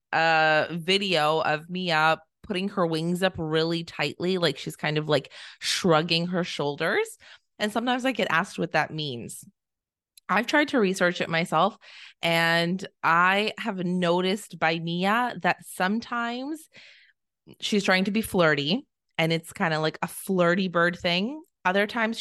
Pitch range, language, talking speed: 155-190 Hz, English, 150 wpm